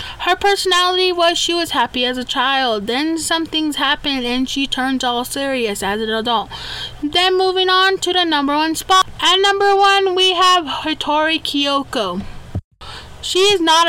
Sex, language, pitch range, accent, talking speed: female, English, 245-345 Hz, American, 170 wpm